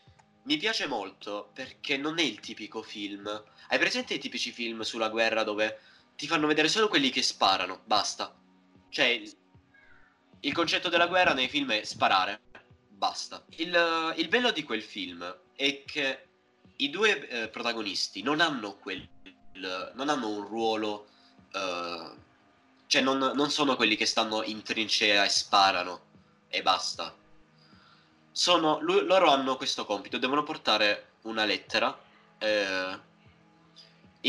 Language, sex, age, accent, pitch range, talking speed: Italian, male, 20-39, native, 105-140 Hz, 135 wpm